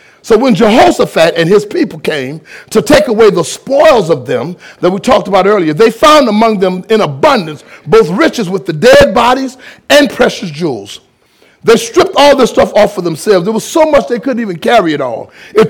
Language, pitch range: English, 185-260 Hz